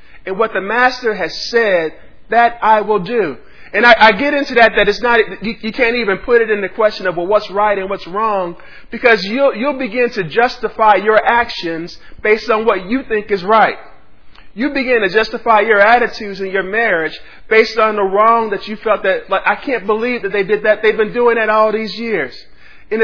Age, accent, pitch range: 40-59, American, 185-235 Hz